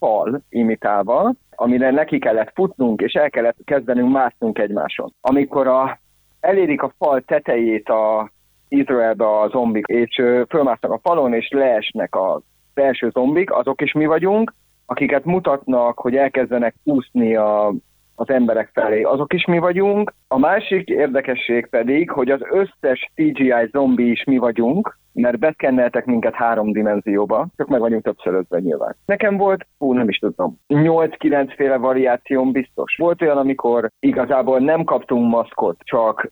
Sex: male